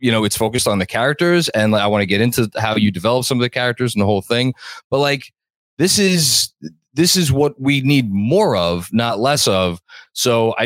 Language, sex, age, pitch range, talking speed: English, male, 20-39, 105-135 Hz, 230 wpm